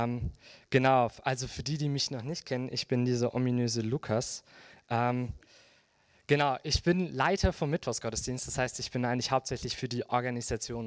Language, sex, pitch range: German, male, 110-125 Hz